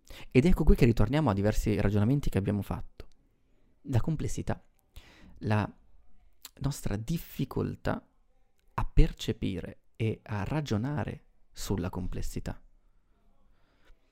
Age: 30-49